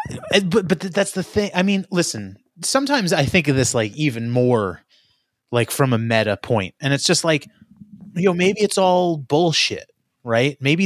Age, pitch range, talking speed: 30-49, 125-150 Hz, 180 wpm